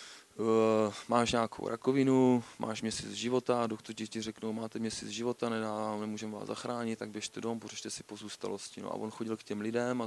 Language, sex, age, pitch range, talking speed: Czech, male, 20-39, 110-115 Hz, 175 wpm